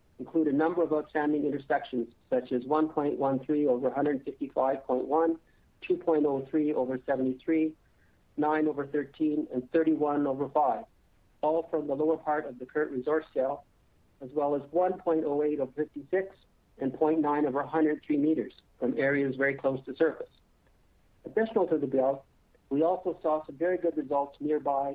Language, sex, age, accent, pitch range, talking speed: English, male, 50-69, American, 135-160 Hz, 145 wpm